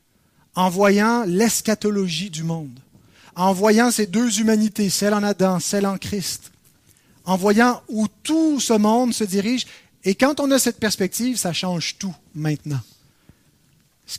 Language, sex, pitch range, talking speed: French, male, 180-240 Hz, 150 wpm